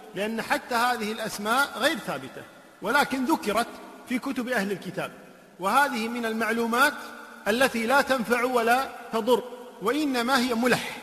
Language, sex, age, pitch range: Arabic, male, 50-69, 210-250 Hz